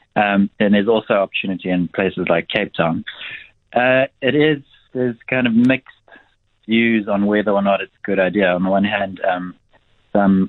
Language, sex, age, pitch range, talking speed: English, male, 20-39, 95-105 Hz, 185 wpm